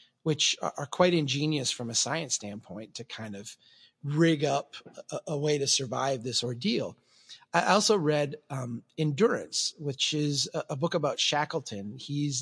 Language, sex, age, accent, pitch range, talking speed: English, male, 30-49, American, 135-160 Hz, 150 wpm